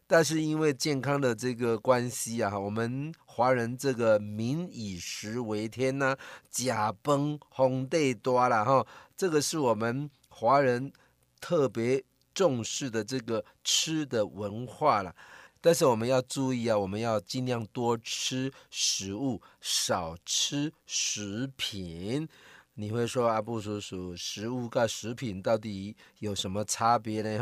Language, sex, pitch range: Chinese, male, 110-135 Hz